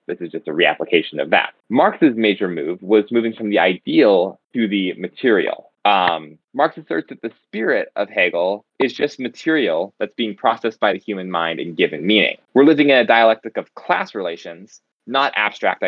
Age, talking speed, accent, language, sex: 20-39, 185 wpm, American, English, male